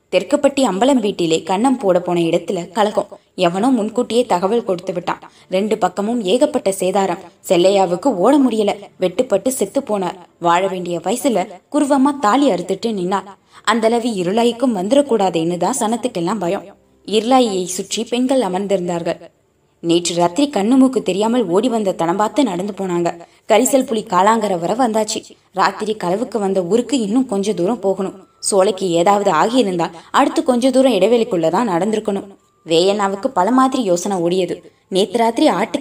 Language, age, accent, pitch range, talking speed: Tamil, 20-39, native, 180-240 Hz, 75 wpm